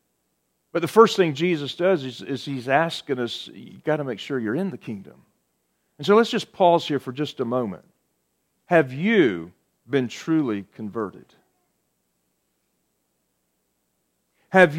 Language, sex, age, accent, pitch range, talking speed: English, male, 40-59, American, 135-190 Hz, 145 wpm